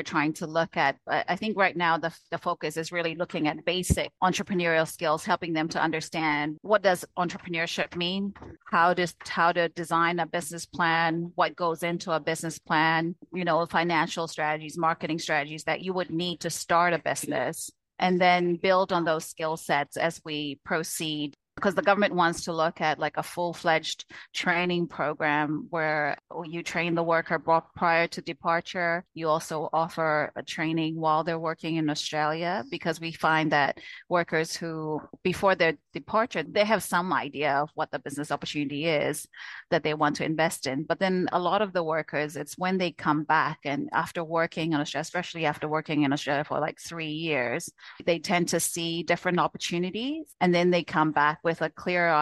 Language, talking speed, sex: English, 185 wpm, female